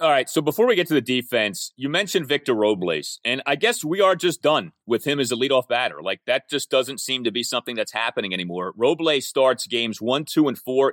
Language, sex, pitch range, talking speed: English, male, 120-190 Hz, 240 wpm